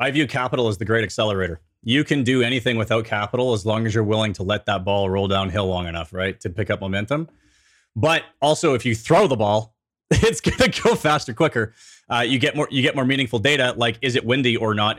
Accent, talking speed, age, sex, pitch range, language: American, 235 wpm, 30-49, male, 110-140 Hz, English